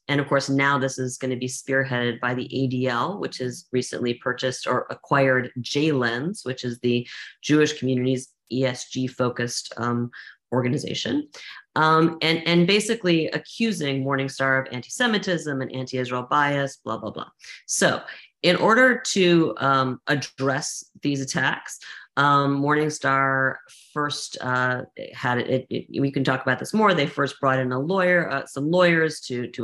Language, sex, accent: English, female, American